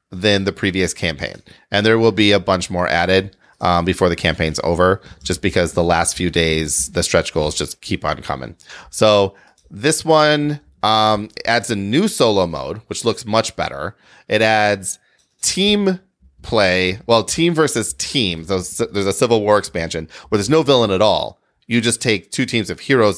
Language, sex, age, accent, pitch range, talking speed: English, male, 30-49, American, 90-115 Hz, 180 wpm